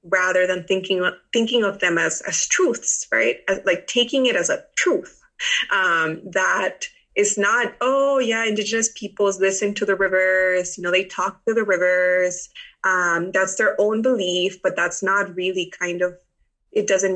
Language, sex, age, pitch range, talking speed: German, female, 20-39, 185-230 Hz, 170 wpm